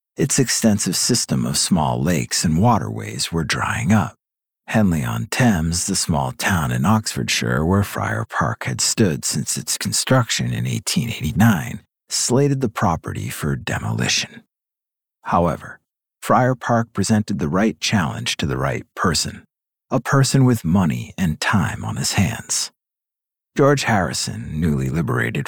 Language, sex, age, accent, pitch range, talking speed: English, male, 50-69, American, 85-115 Hz, 130 wpm